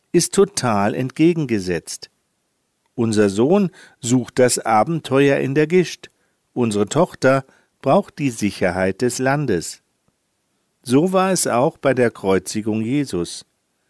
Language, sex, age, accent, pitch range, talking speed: German, male, 50-69, German, 110-155 Hz, 110 wpm